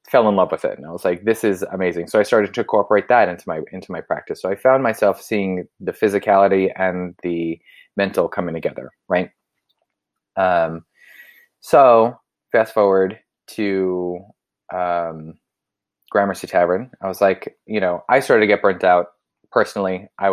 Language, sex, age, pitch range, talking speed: English, male, 20-39, 90-110 Hz, 170 wpm